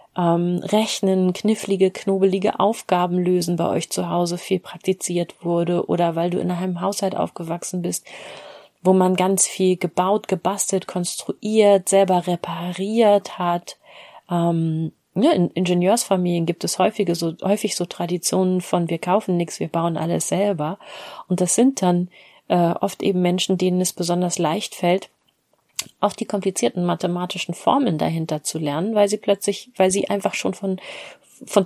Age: 30-49